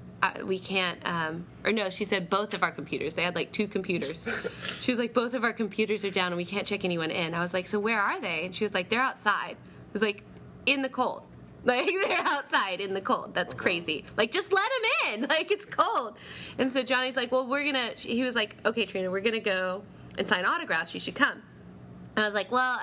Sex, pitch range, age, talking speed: female, 195-255 Hz, 20-39, 240 wpm